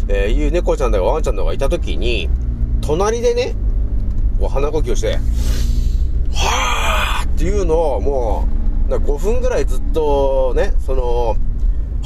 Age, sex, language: 30-49, male, Japanese